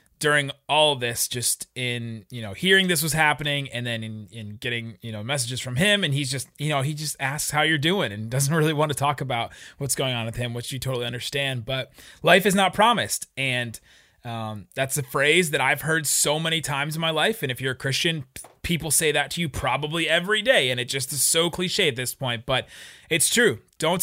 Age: 30-49